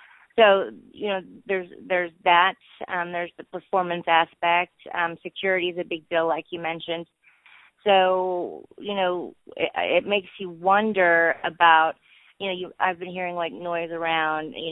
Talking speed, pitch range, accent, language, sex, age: 160 wpm, 160-180 Hz, American, English, female, 30-49